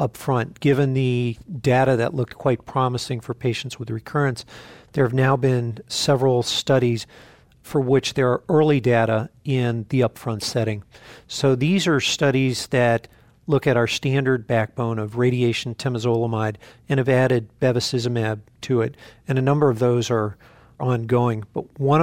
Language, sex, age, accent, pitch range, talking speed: English, male, 50-69, American, 120-140 Hz, 155 wpm